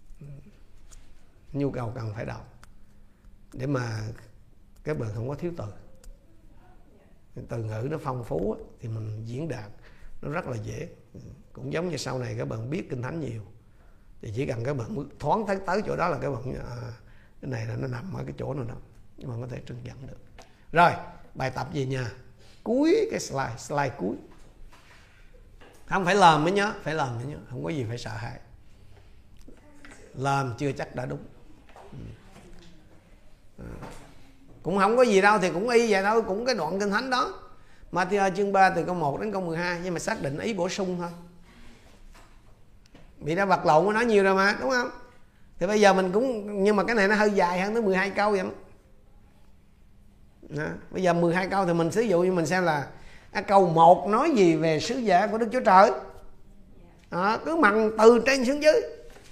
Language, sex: Vietnamese, male